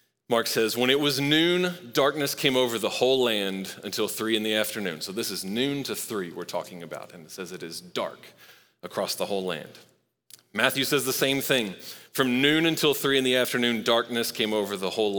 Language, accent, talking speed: English, American, 210 wpm